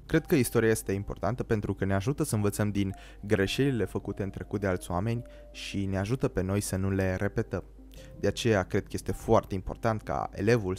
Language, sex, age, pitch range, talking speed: Romanian, male, 20-39, 95-110 Hz, 205 wpm